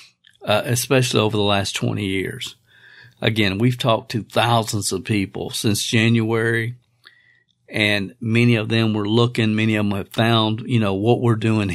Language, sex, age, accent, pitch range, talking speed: English, male, 50-69, American, 110-125 Hz, 165 wpm